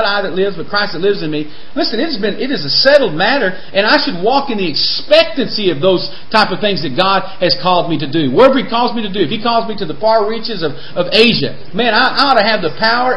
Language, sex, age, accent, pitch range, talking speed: English, male, 40-59, American, 165-230 Hz, 280 wpm